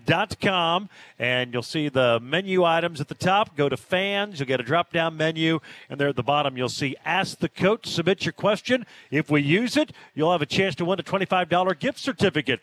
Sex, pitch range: male, 135-175 Hz